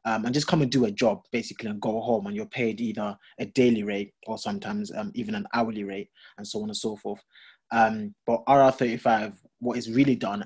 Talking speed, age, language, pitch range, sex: 225 wpm, 20-39, English, 110-140 Hz, male